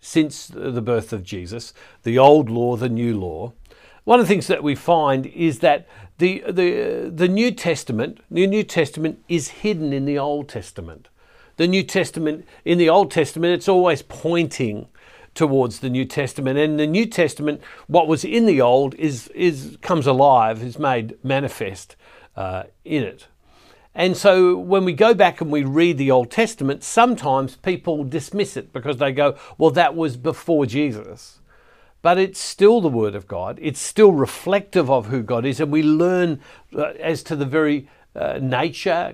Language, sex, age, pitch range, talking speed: English, male, 50-69, 130-170 Hz, 175 wpm